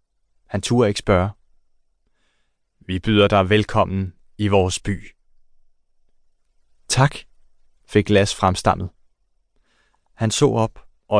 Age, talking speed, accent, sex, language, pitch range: 30-49, 100 wpm, native, male, Danish, 100-120 Hz